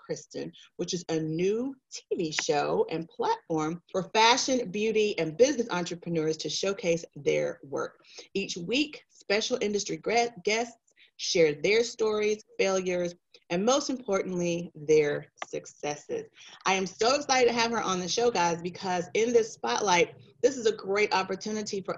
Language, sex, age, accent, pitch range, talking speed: English, female, 30-49, American, 170-235 Hz, 145 wpm